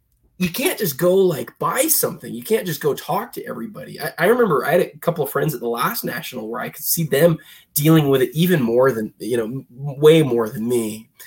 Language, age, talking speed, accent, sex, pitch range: English, 20-39, 235 wpm, American, male, 125-175 Hz